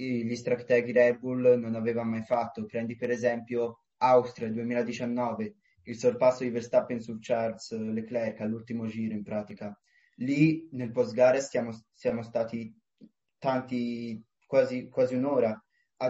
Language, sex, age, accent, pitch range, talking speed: Italian, male, 20-39, native, 115-130 Hz, 130 wpm